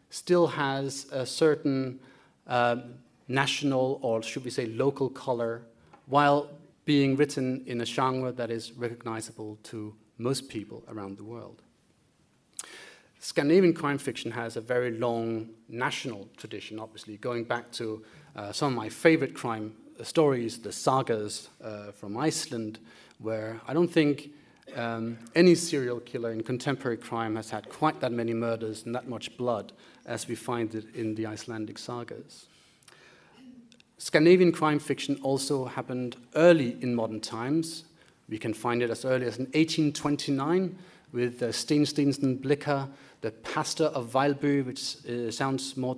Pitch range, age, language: 115-145 Hz, 30-49, English